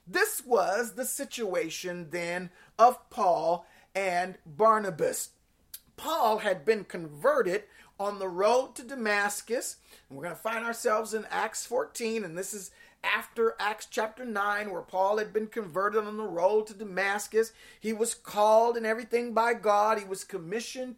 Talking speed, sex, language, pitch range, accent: 150 wpm, male, English, 205-245 Hz, American